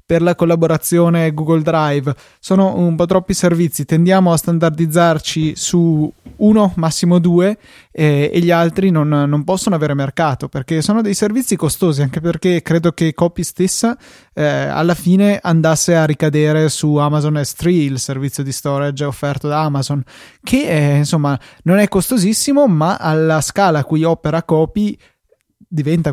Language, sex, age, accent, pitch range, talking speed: Italian, male, 20-39, native, 150-180 Hz, 155 wpm